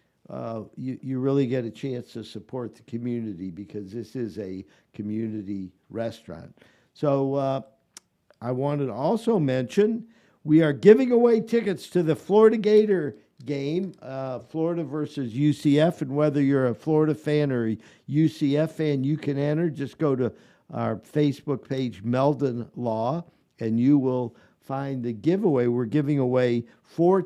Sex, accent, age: male, American, 50-69